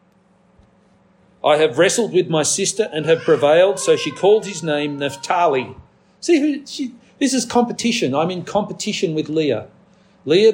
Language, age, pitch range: English, 50-69, 165-200 Hz